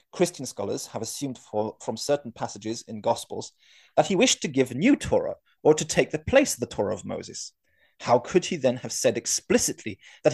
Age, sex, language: 30-49, male, English